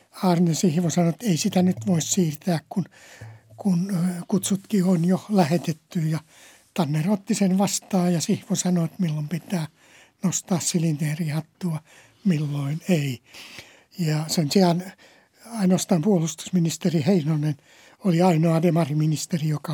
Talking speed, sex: 125 wpm, male